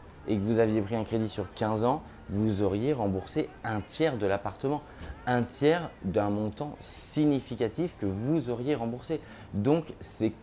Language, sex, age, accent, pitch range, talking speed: French, male, 20-39, French, 95-120 Hz, 160 wpm